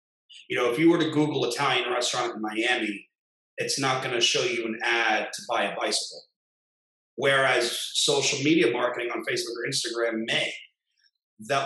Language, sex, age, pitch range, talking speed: English, male, 30-49, 110-155 Hz, 170 wpm